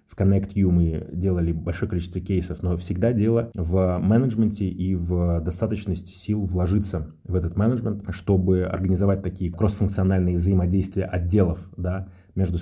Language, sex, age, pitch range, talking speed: Russian, male, 20-39, 85-95 Hz, 135 wpm